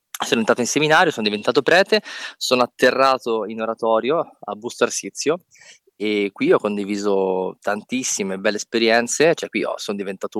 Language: Italian